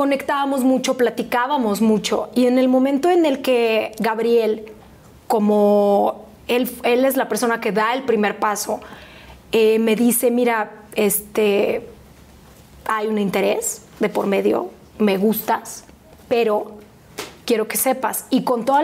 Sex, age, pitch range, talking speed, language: female, 30-49, 215-255 Hz, 135 wpm, Spanish